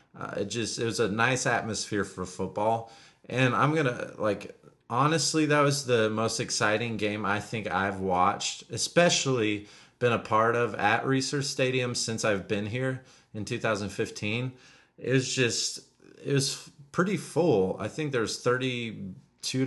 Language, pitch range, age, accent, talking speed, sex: English, 105-130 Hz, 30-49, American, 145 wpm, male